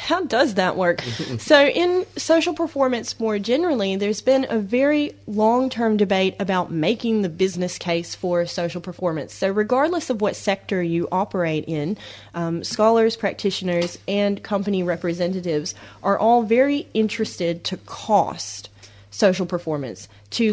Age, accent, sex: 30-49, American, female